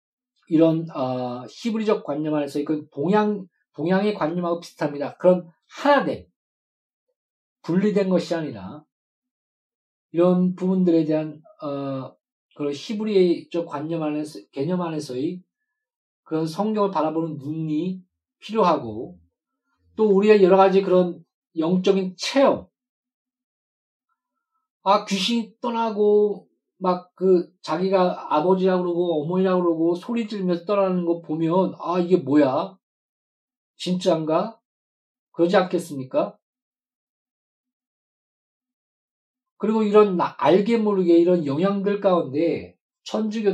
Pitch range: 160-215 Hz